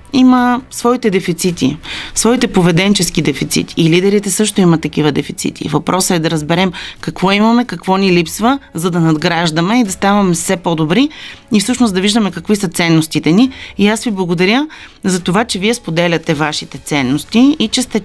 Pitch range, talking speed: 175-225 Hz, 170 wpm